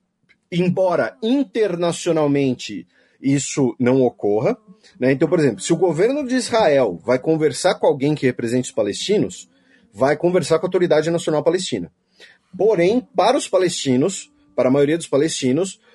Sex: male